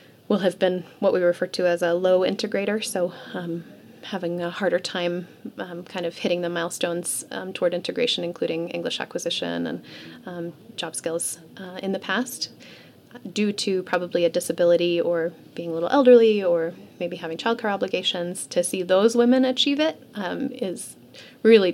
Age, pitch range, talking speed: 30-49, 175-210 Hz, 170 wpm